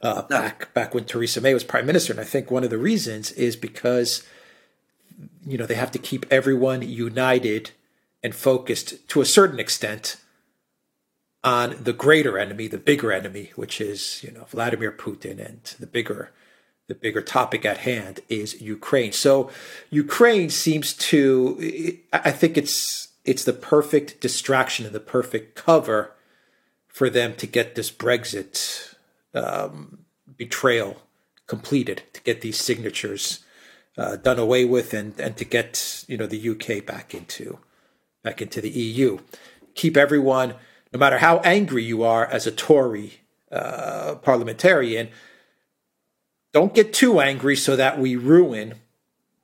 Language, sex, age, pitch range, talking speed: English, male, 40-59, 115-140 Hz, 150 wpm